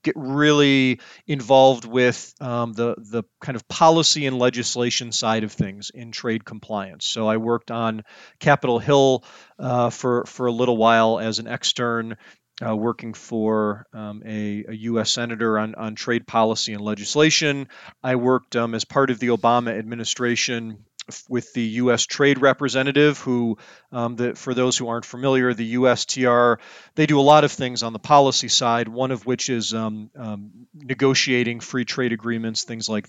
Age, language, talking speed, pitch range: 40-59, English, 170 wpm, 110-125 Hz